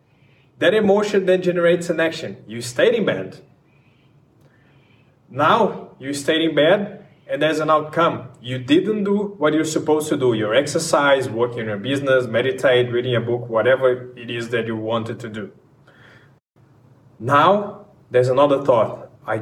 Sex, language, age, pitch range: male, English, 20-39, 125-155 Hz